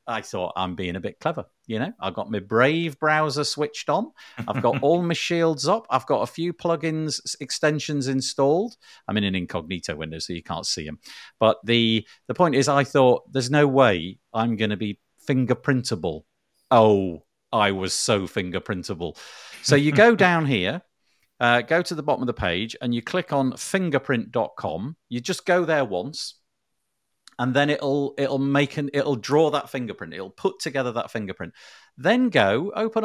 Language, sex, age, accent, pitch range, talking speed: English, male, 50-69, British, 110-160 Hz, 180 wpm